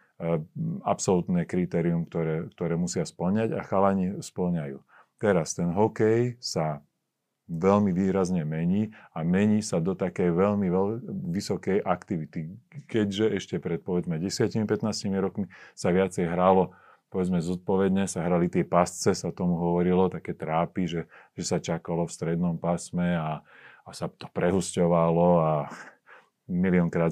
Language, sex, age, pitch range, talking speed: Slovak, male, 40-59, 85-105 Hz, 130 wpm